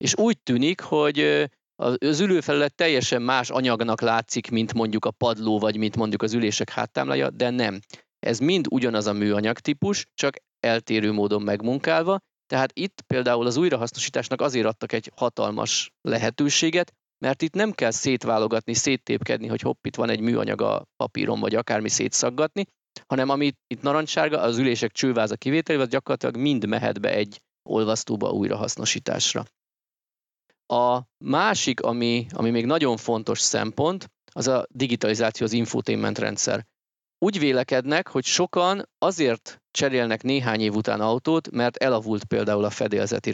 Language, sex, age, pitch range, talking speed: Hungarian, male, 30-49, 115-145 Hz, 145 wpm